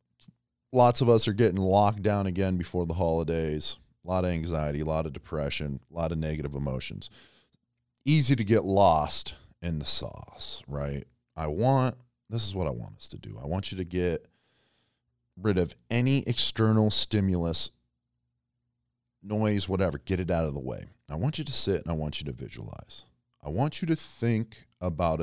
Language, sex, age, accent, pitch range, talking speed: English, male, 30-49, American, 75-110 Hz, 185 wpm